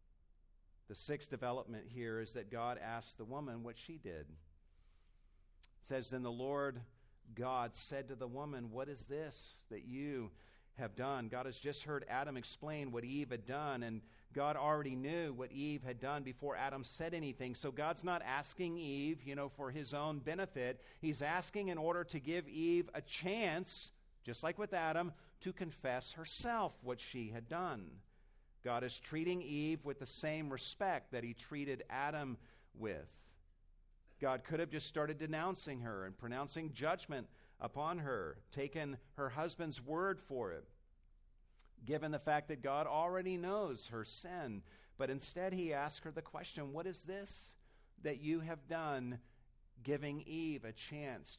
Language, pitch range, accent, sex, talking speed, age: English, 115-155 Hz, American, male, 165 wpm, 50-69